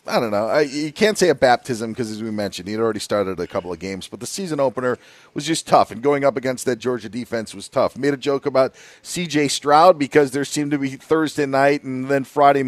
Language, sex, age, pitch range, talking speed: English, male, 40-59, 125-150 Hz, 245 wpm